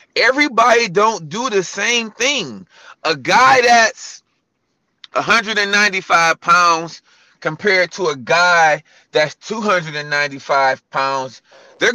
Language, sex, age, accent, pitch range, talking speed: English, male, 30-49, American, 175-240 Hz, 95 wpm